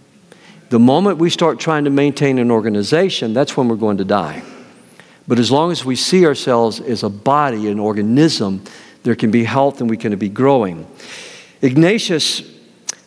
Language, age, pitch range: English, 50-69, 125-175 Hz